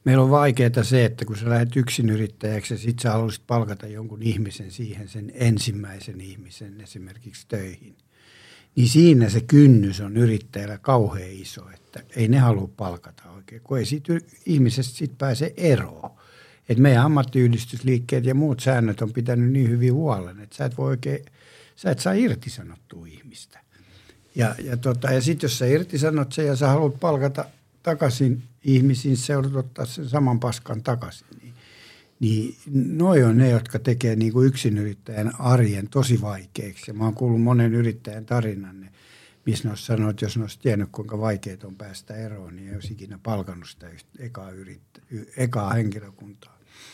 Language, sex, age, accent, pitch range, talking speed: Finnish, male, 60-79, native, 110-135 Hz, 160 wpm